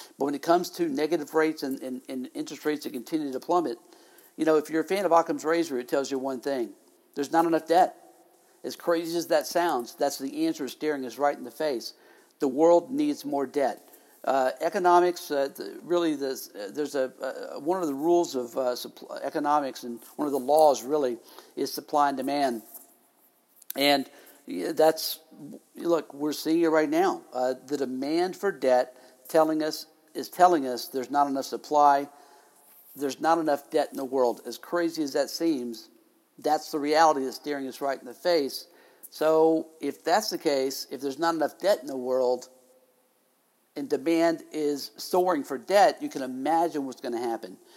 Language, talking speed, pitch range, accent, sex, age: English, 190 wpm, 135-165 Hz, American, male, 50-69